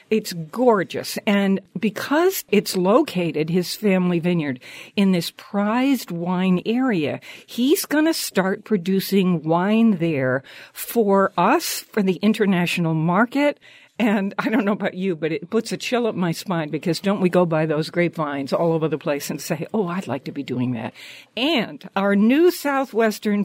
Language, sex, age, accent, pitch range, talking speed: English, female, 60-79, American, 175-225 Hz, 165 wpm